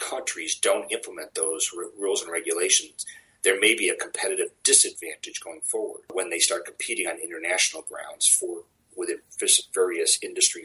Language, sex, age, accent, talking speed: English, male, 40-59, American, 145 wpm